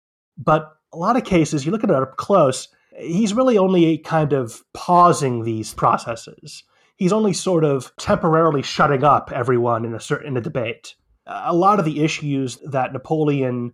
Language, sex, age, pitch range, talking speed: English, male, 30-49, 125-155 Hz, 175 wpm